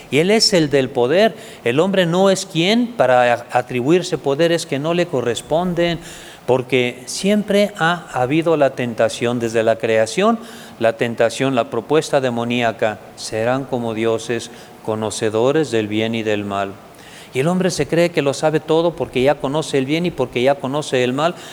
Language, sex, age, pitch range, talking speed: Spanish, male, 50-69, 125-180 Hz, 170 wpm